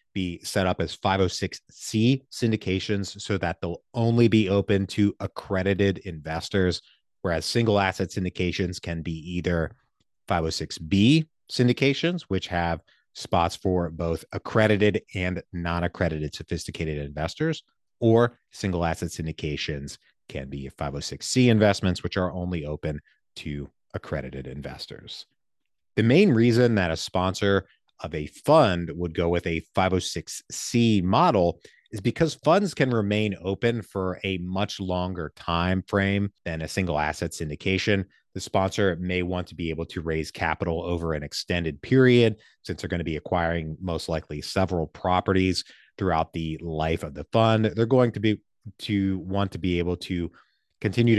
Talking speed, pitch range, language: 145 wpm, 85-105 Hz, English